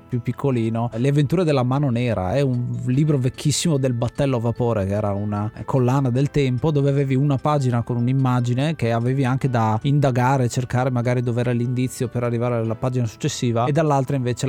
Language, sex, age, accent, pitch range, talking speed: Italian, male, 30-49, native, 120-140 Hz, 180 wpm